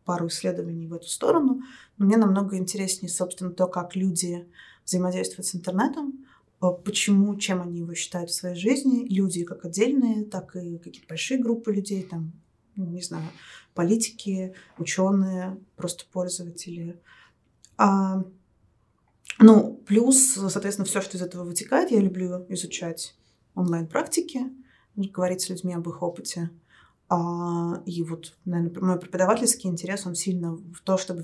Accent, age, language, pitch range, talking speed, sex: native, 20-39, Russian, 170-200 Hz, 135 wpm, female